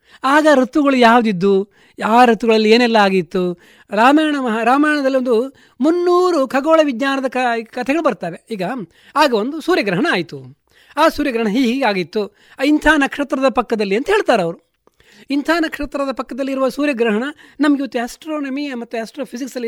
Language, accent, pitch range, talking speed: Kannada, native, 225-290 Hz, 125 wpm